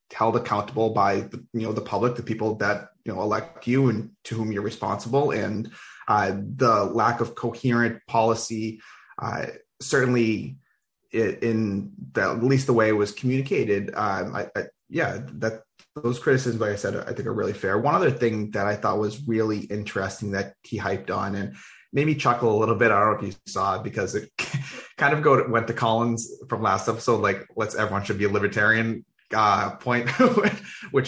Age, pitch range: 20-39, 110-130 Hz